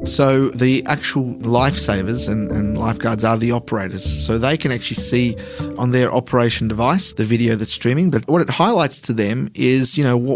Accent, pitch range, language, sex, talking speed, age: Australian, 110-135 Hz, English, male, 185 wpm, 30-49